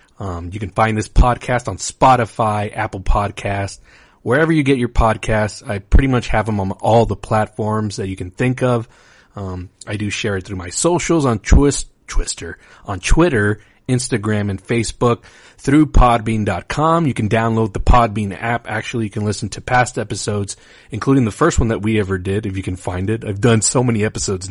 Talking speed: 190 wpm